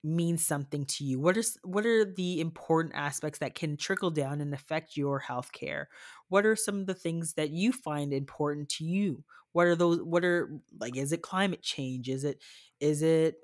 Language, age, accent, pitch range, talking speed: English, 20-39, American, 140-175 Hz, 200 wpm